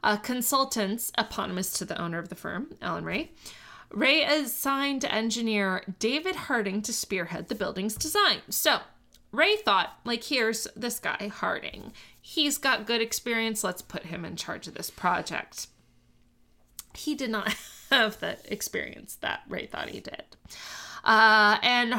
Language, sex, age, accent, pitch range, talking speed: English, female, 20-39, American, 185-255 Hz, 145 wpm